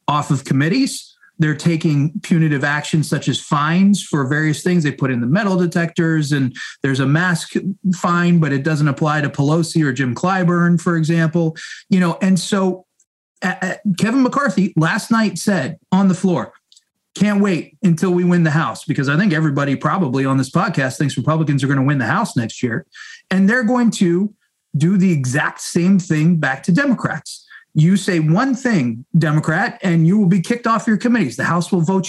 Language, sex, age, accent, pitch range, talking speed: English, male, 30-49, American, 150-190 Hz, 190 wpm